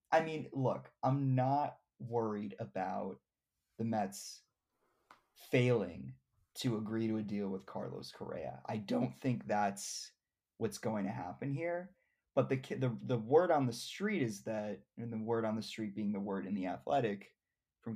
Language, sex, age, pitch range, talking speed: English, male, 20-39, 105-125 Hz, 165 wpm